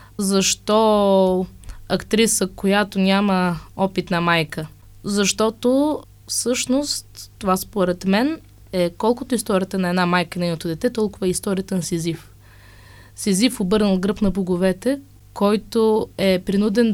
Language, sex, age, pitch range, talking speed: Bulgarian, female, 20-39, 175-215 Hz, 115 wpm